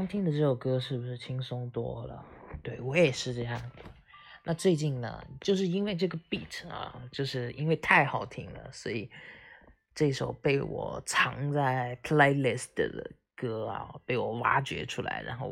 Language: Chinese